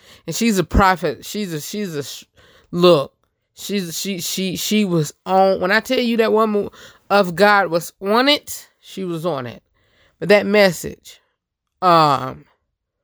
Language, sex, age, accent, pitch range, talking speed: English, female, 20-39, American, 145-195 Hz, 155 wpm